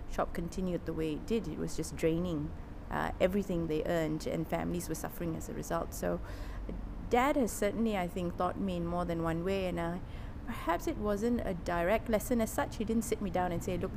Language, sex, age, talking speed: English, female, 20-39, 230 wpm